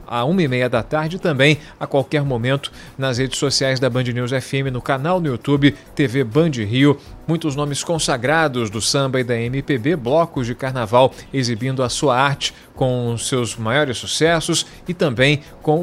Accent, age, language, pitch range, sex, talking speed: Brazilian, 40-59, Portuguese, 130-165 Hz, male, 175 wpm